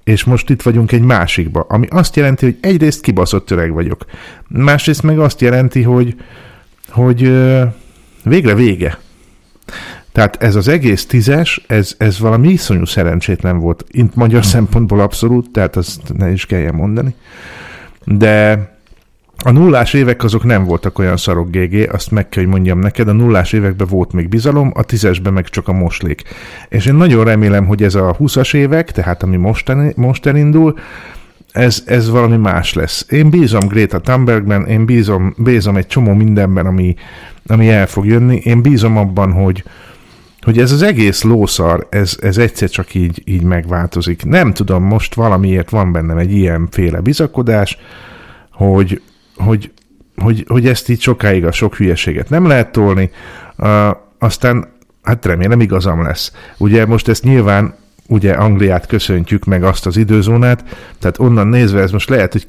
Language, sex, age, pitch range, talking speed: Hungarian, male, 50-69, 95-120 Hz, 160 wpm